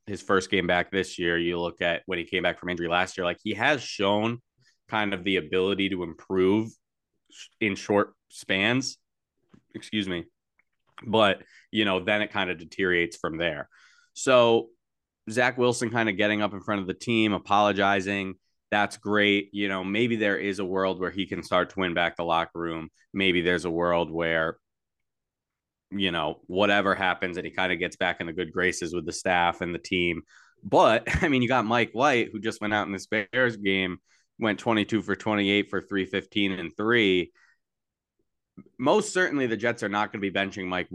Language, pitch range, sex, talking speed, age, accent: English, 90-110 Hz, male, 195 wpm, 20-39, American